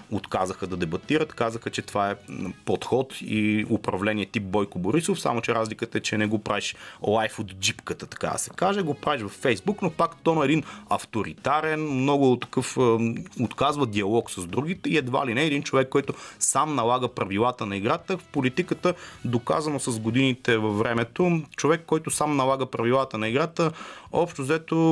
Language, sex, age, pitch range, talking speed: Bulgarian, male, 30-49, 110-150 Hz, 175 wpm